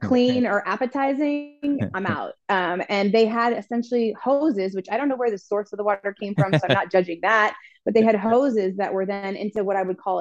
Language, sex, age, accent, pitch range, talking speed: English, female, 20-39, American, 175-220 Hz, 235 wpm